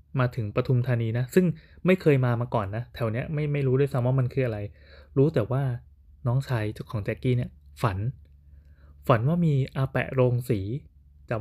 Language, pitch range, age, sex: Thai, 105-135 Hz, 20-39, male